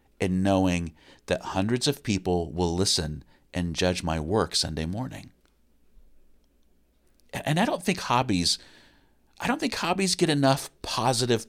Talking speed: 135 wpm